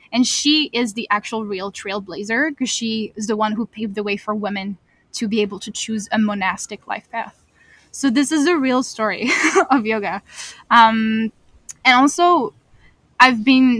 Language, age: English, 10-29